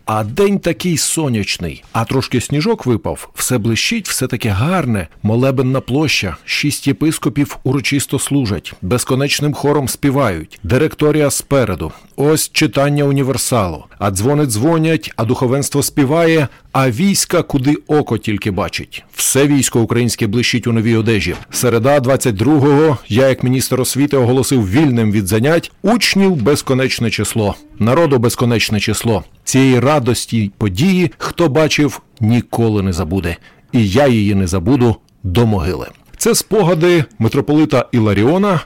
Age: 50-69